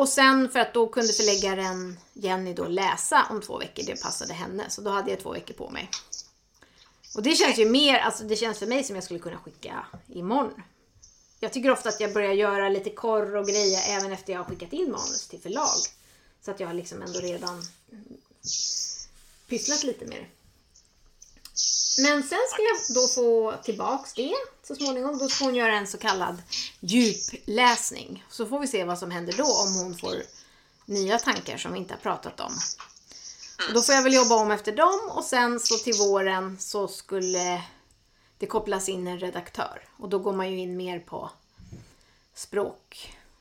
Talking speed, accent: 190 wpm, native